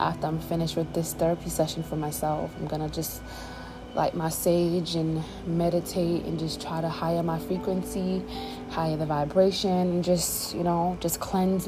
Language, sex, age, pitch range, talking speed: English, female, 20-39, 145-185 Hz, 175 wpm